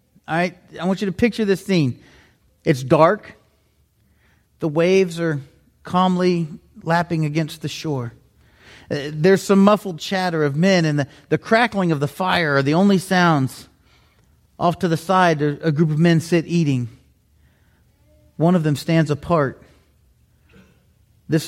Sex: male